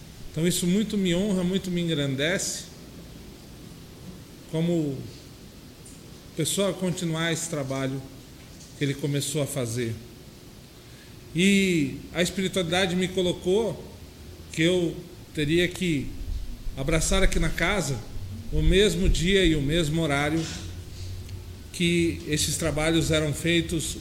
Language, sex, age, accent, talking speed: Portuguese, male, 40-59, Brazilian, 105 wpm